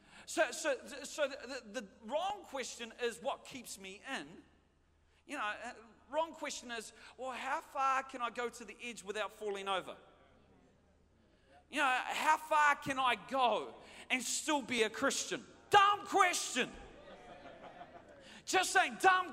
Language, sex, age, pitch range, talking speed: English, male, 40-59, 255-335 Hz, 145 wpm